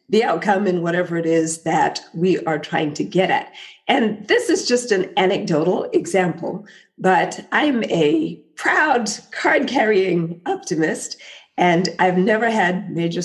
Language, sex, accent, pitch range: English, female, American, 170-245 Hz